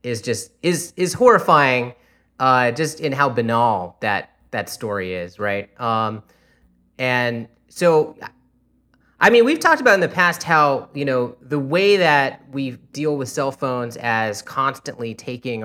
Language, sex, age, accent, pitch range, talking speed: English, male, 30-49, American, 105-135 Hz, 155 wpm